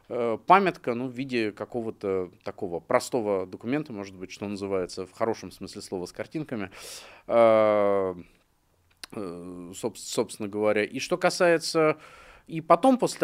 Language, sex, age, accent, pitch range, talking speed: Russian, male, 30-49, native, 95-150 Hz, 120 wpm